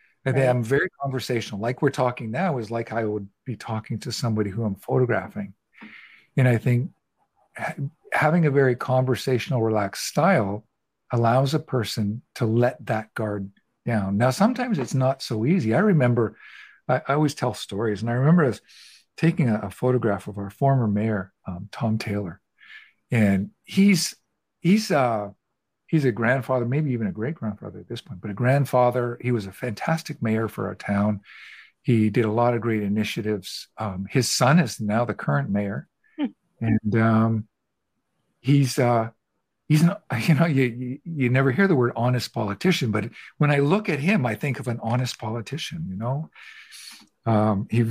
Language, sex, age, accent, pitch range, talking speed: English, male, 50-69, American, 110-140 Hz, 170 wpm